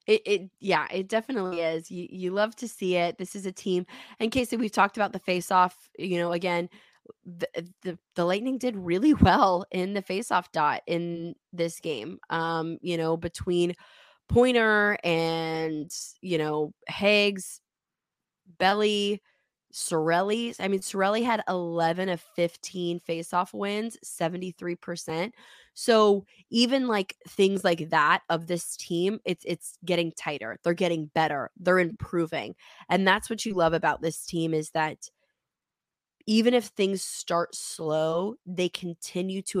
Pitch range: 170-205 Hz